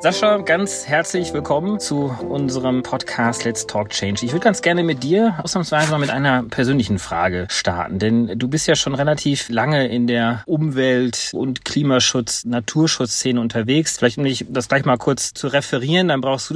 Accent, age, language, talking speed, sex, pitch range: German, 30-49, German, 180 wpm, male, 125-150 Hz